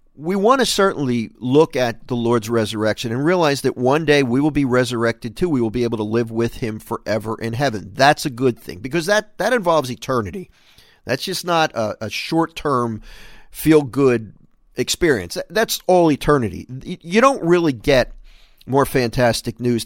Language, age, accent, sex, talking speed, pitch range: English, 50-69, American, male, 170 wpm, 115-150 Hz